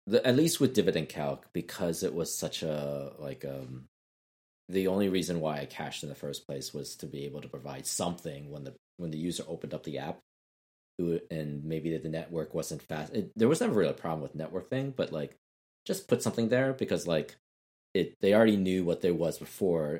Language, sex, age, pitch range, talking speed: English, male, 30-49, 75-90 Hz, 215 wpm